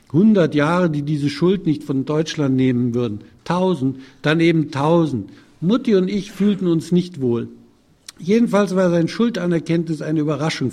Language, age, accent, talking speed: German, 60-79, German, 150 wpm